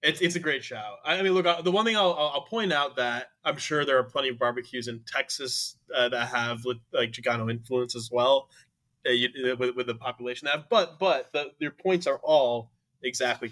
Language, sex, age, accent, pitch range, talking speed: English, male, 20-39, American, 115-135 Hz, 215 wpm